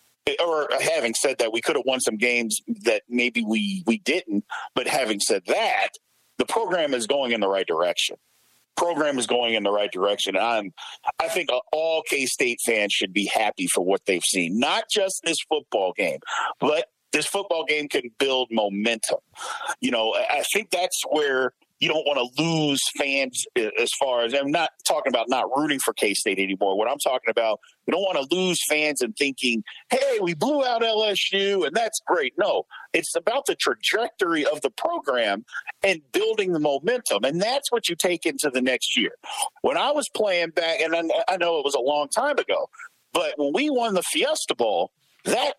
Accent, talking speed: American, 195 wpm